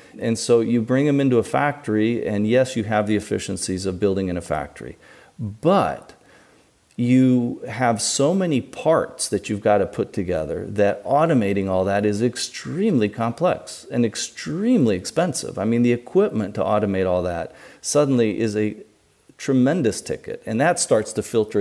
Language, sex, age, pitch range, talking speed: English, male, 40-59, 105-125 Hz, 165 wpm